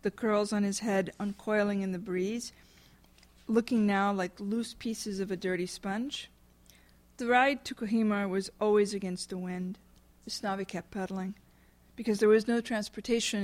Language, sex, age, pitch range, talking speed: English, female, 50-69, 190-220 Hz, 155 wpm